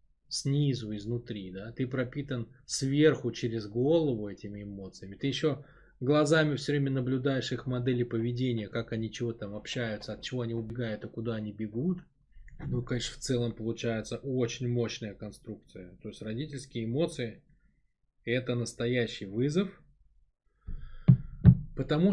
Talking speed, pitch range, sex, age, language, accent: 135 wpm, 110-145 Hz, male, 20-39, Russian, native